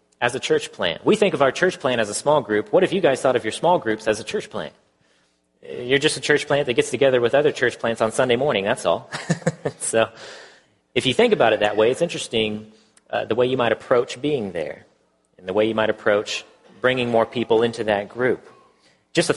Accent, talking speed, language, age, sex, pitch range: American, 235 wpm, English, 40-59, male, 105-145 Hz